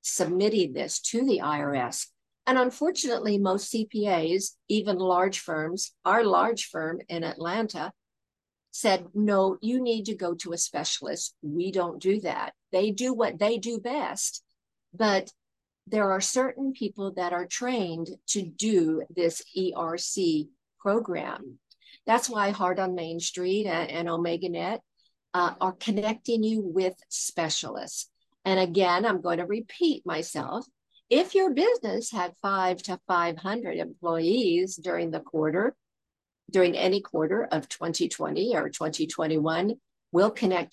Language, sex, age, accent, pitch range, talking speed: English, female, 50-69, American, 175-230 Hz, 135 wpm